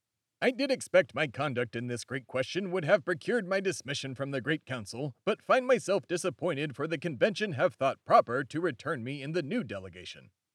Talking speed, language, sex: 200 wpm, English, male